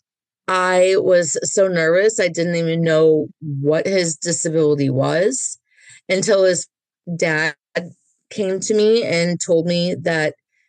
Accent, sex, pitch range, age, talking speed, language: American, female, 165-195 Hz, 30-49, 125 wpm, English